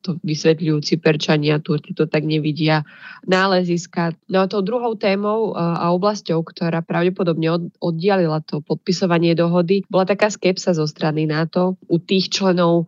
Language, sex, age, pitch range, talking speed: Slovak, female, 20-39, 160-185 Hz, 135 wpm